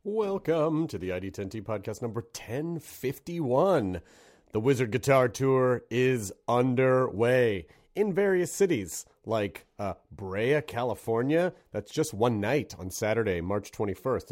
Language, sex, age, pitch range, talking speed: English, male, 30-49, 95-155 Hz, 115 wpm